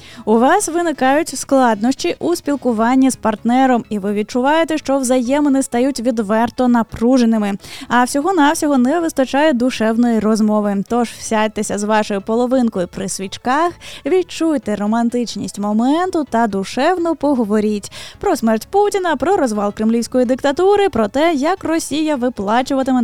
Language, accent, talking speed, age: Ukrainian, native, 120 wpm, 10-29